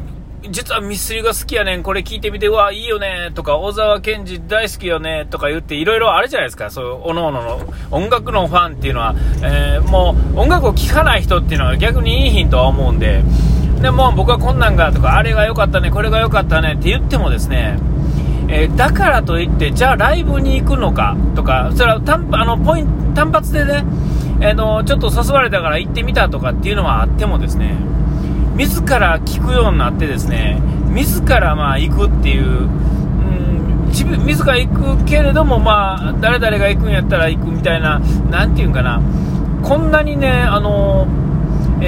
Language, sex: Japanese, male